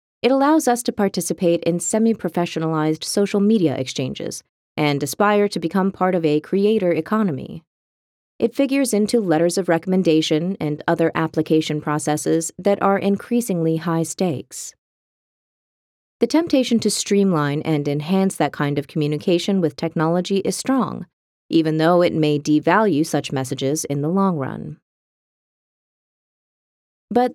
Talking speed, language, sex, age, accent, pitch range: 130 wpm, English, female, 30-49, American, 155-205 Hz